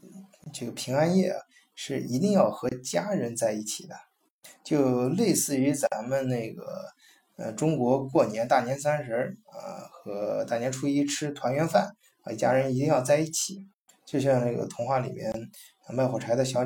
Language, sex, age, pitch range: Chinese, male, 20-39, 115-150 Hz